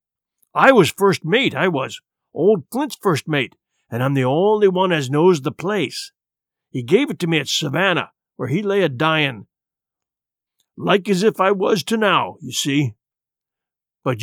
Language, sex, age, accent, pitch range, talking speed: English, male, 50-69, American, 140-195 Hz, 170 wpm